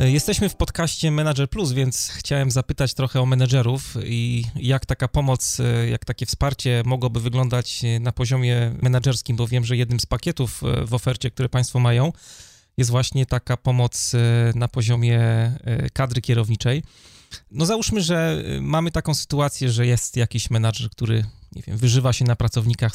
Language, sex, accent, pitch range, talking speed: Polish, male, native, 120-135 Hz, 155 wpm